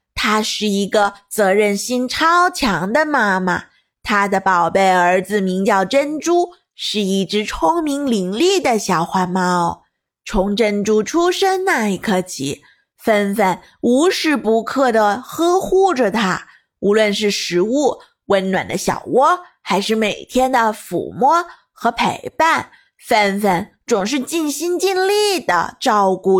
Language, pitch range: Chinese, 190-275 Hz